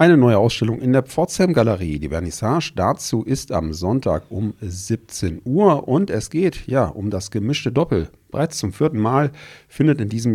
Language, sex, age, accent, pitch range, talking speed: German, male, 40-59, German, 90-125 Hz, 180 wpm